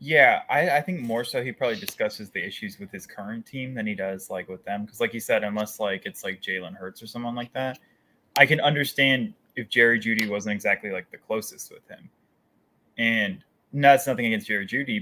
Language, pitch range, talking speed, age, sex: English, 100-130 Hz, 220 wpm, 20-39, male